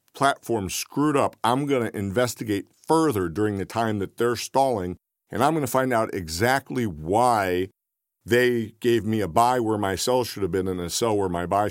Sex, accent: male, American